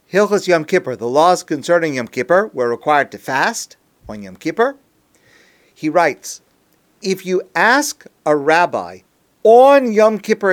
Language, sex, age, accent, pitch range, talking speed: English, male, 50-69, American, 145-190 Hz, 140 wpm